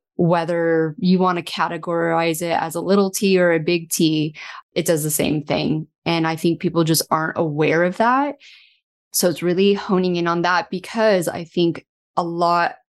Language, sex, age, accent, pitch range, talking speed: English, female, 20-39, American, 165-195 Hz, 185 wpm